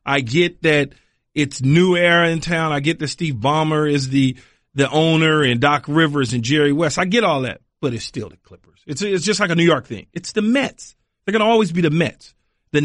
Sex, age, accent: male, 40-59, American